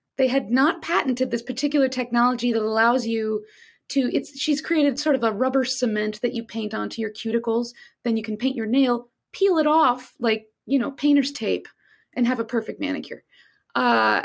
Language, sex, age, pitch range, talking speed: English, female, 30-49, 230-295 Hz, 185 wpm